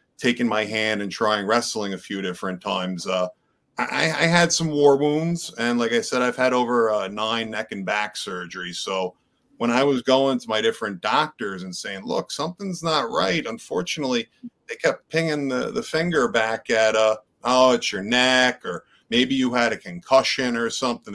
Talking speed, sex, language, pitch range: 195 wpm, male, English, 115-150 Hz